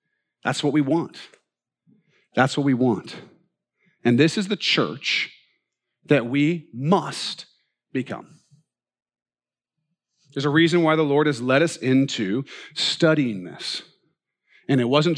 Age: 40-59